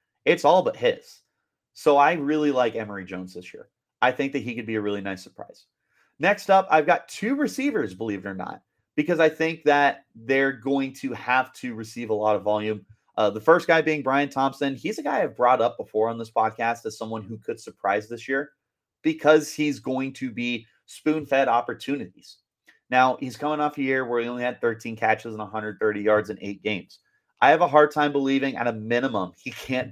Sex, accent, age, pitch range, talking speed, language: male, American, 30-49, 115-145 Hz, 215 wpm, English